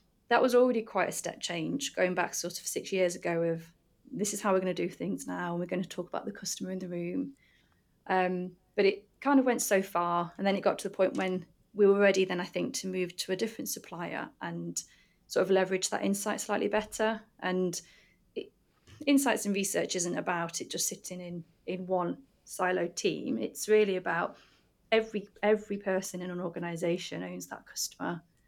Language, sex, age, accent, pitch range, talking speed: English, female, 30-49, British, 175-205 Hz, 205 wpm